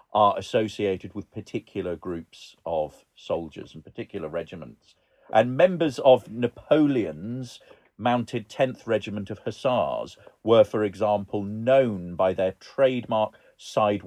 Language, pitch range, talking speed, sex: English, 105-135 Hz, 115 wpm, male